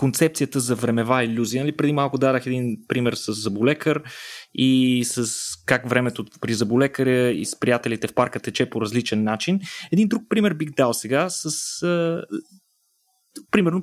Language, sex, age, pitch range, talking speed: Bulgarian, male, 20-39, 125-170 Hz, 155 wpm